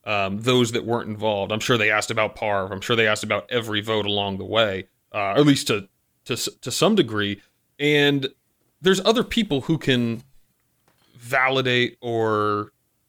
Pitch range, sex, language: 105-130 Hz, male, English